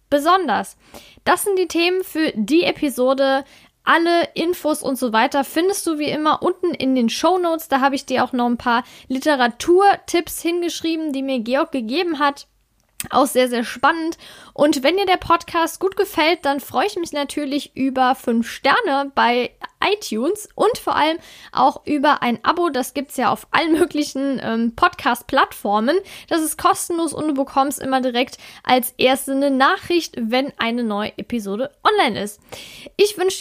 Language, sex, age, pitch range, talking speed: German, female, 10-29, 255-330 Hz, 165 wpm